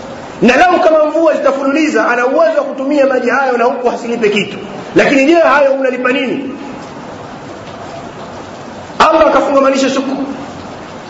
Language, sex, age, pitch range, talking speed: Swahili, male, 40-59, 210-285 Hz, 125 wpm